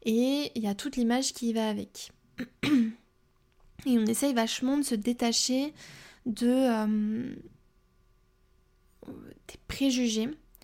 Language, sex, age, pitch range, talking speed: French, female, 20-39, 215-245 Hz, 115 wpm